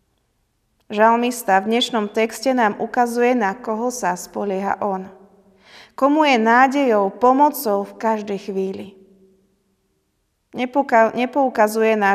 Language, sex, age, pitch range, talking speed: Slovak, female, 30-49, 200-250 Hz, 100 wpm